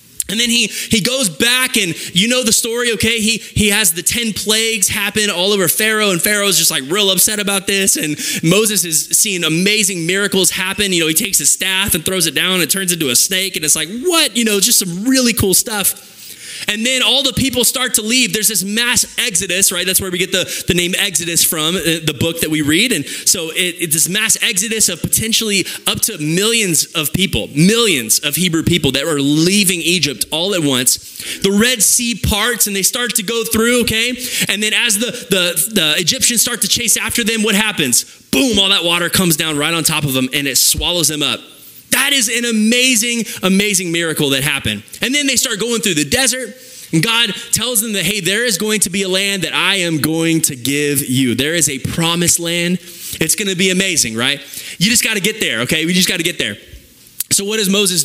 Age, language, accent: 20-39, English, American